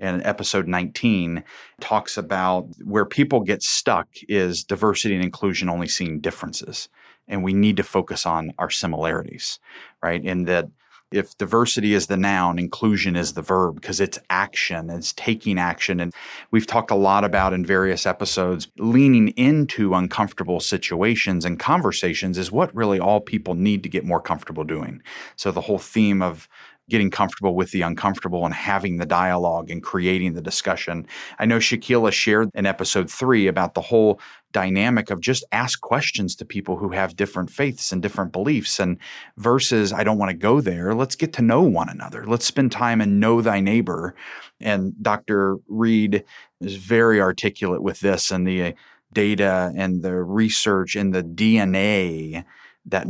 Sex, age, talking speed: male, 30-49, 170 wpm